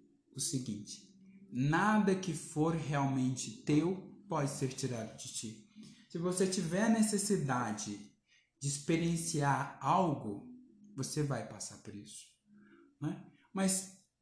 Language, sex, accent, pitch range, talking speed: Portuguese, male, Brazilian, 135-195 Hz, 110 wpm